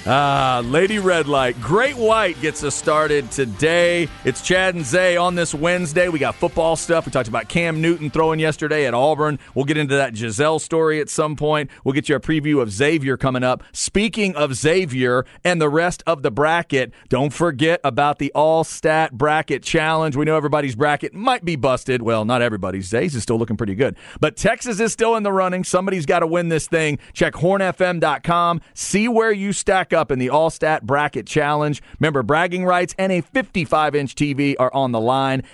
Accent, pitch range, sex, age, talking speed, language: American, 130-170 Hz, male, 40-59, 195 wpm, English